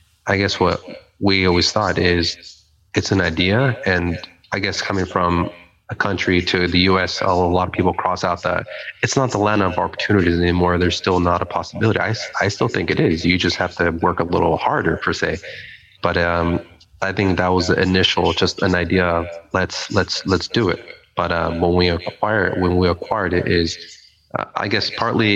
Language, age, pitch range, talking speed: English, 30-49, 85-100 Hz, 205 wpm